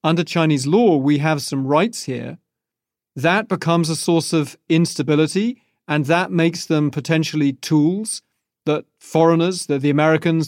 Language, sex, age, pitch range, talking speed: English, male, 40-59, 140-170 Hz, 145 wpm